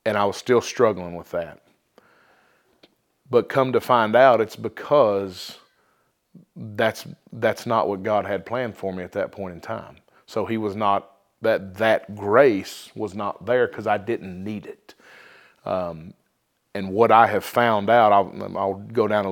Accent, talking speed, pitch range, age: American, 170 wpm, 100-125 Hz, 40-59